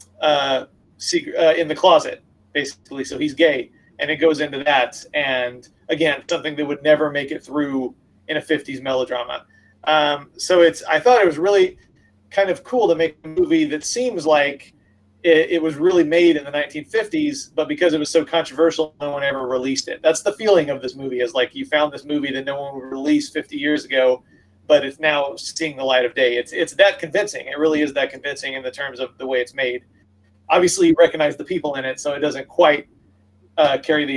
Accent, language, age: American, English, 30-49